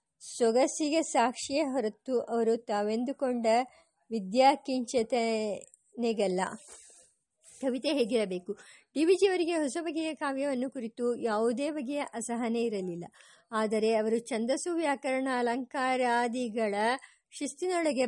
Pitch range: 230-285 Hz